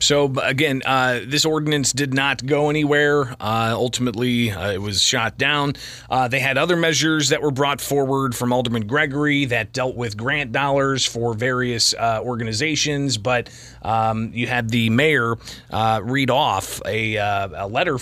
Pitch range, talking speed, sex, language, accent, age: 115-145 Hz, 165 wpm, male, English, American, 30-49